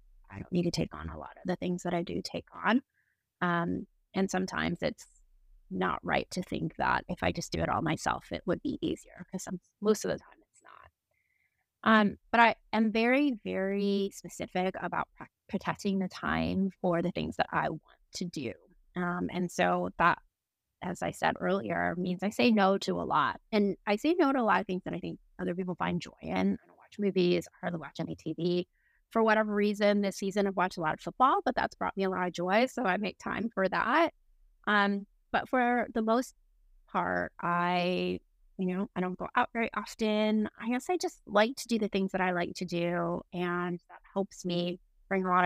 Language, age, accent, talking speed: English, 20-39, American, 220 wpm